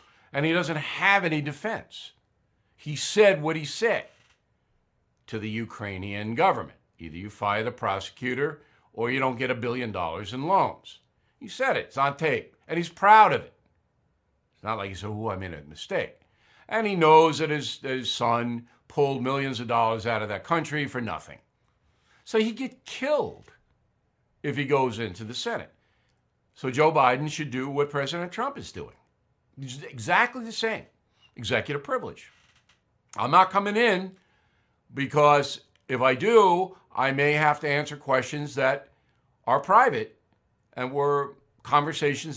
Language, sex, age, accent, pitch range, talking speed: English, male, 60-79, American, 115-155 Hz, 160 wpm